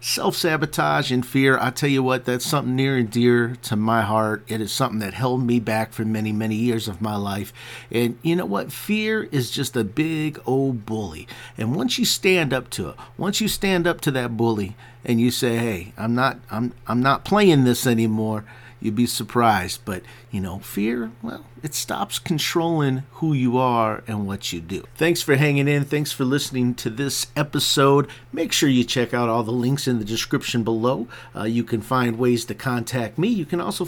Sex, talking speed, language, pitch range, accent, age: male, 210 wpm, English, 115-150 Hz, American, 50-69